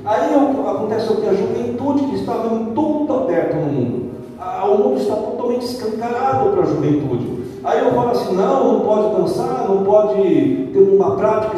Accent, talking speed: Brazilian, 175 wpm